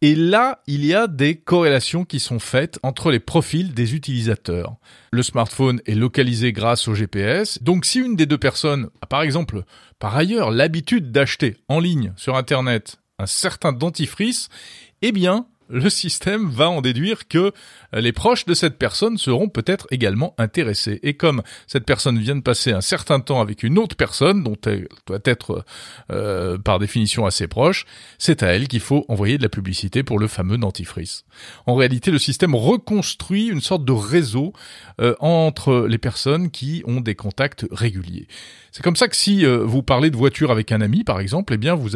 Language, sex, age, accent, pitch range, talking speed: French, male, 40-59, French, 115-170 Hz, 185 wpm